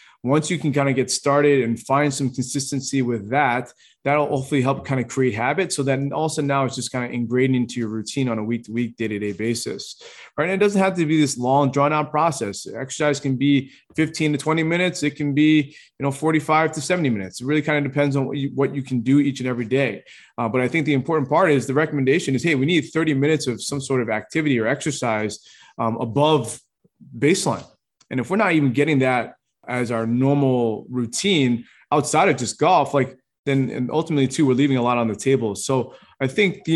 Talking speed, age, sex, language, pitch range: 230 wpm, 20-39, male, English, 125-150 Hz